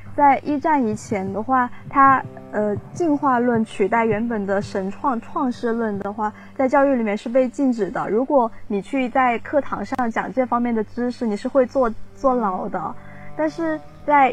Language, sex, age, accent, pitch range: Chinese, female, 20-39, native, 210-270 Hz